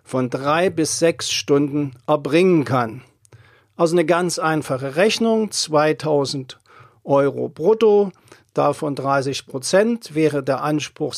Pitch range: 130-165 Hz